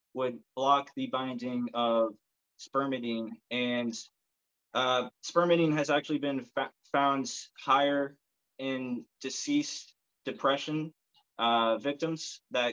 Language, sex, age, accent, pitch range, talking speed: English, male, 20-39, American, 115-130 Hz, 100 wpm